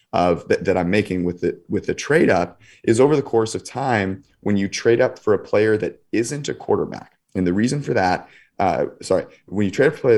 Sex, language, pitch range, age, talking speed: male, English, 90-115 Hz, 30-49, 235 wpm